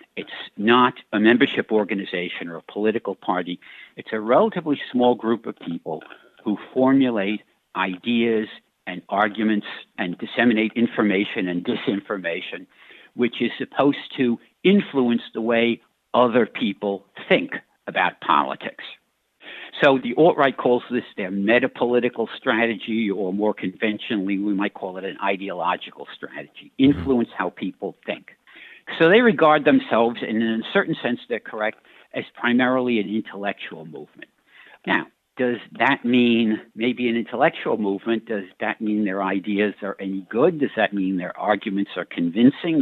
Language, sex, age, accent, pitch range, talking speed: English, male, 60-79, American, 100-125 Hz, 140 wpm